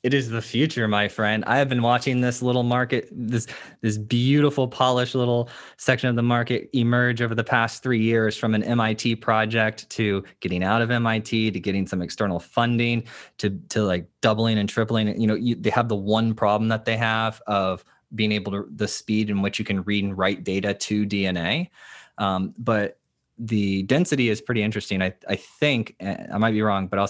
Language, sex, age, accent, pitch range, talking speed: English, male, 20-39, American, 100-120 Hz, 200 wpm